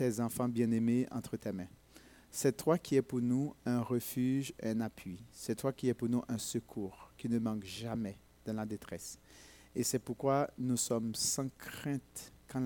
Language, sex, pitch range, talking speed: French, male, 110-130 Hz, 180 wpm